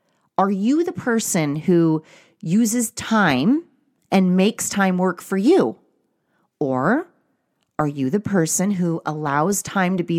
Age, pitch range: 30-49, 165-225 Hz